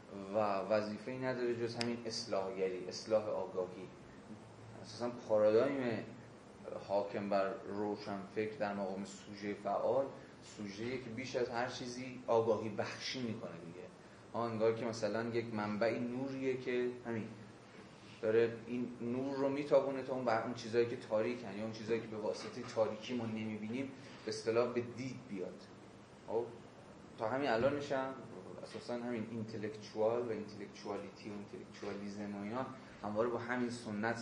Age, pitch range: 30-49, 105-120 Hz